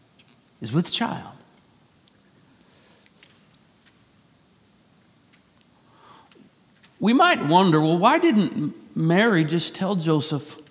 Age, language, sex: 50-69, English, male